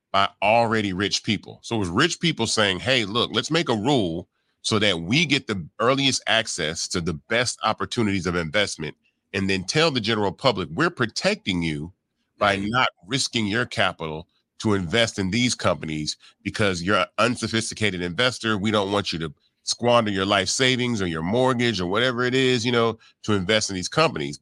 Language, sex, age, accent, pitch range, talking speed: English, male, 30-49, American, 90-115 Hz, 185 wpm